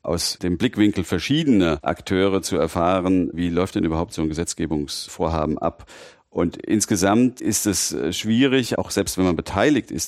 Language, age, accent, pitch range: German, 40-59, German, 85-100 Hz